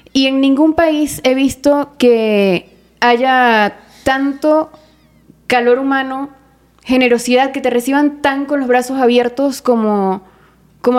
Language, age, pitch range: English, 20-39, 220-260 Hz